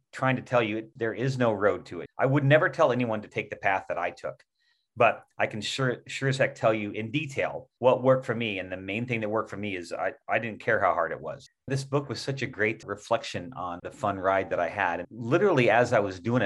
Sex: male